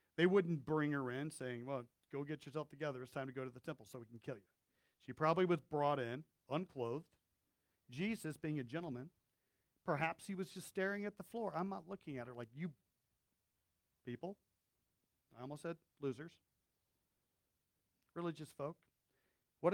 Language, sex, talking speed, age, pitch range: English, male, 170 wpm, 50-69, 125-180 Hz